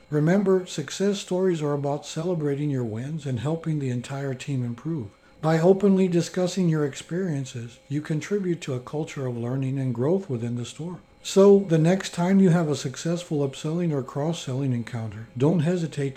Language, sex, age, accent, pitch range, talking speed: English, male, 60-79, American, 130-175 Hz, 165 wpm